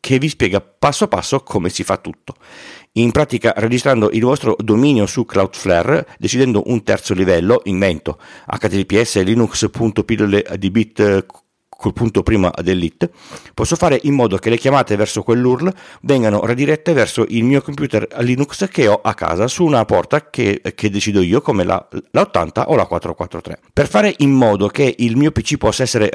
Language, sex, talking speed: Italian, male, 170 wpm